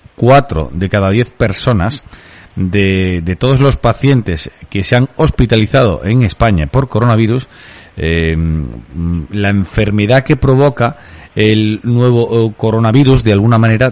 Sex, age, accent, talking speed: male, 40-59, Spanish, 125 wpm